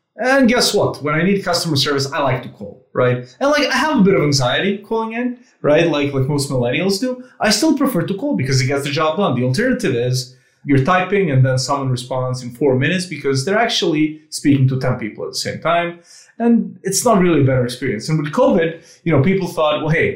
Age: 30-49